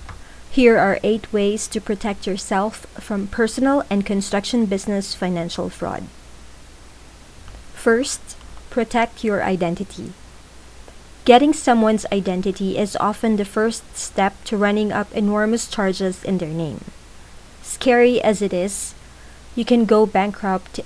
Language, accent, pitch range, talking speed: English, Filipino, 185-225 Hz, 120 wpm